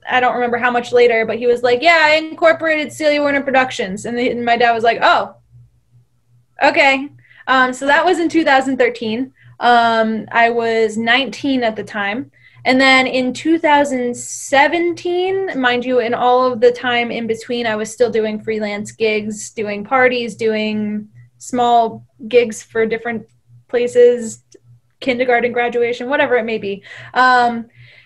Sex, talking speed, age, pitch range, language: female, 150 wpm, 10-29, 220-270 Hz, English